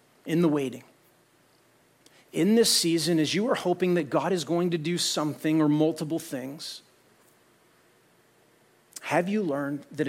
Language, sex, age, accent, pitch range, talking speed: English, male, 40-59, American, 135-175 Hz, 145 wpm